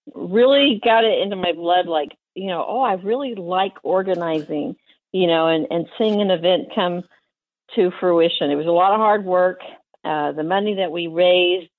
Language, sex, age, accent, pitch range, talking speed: English, female, 50-69, American, 155-190 Hz, 190 wpm